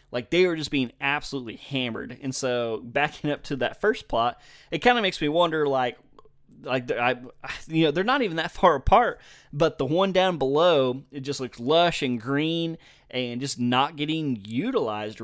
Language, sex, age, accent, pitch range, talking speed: English, male, 20-39, American, 120-145 Hz, 190 wpm